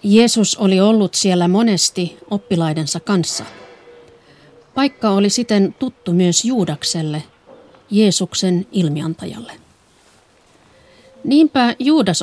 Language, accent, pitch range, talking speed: Finnish, native, 160-215 Hz, 85 wpm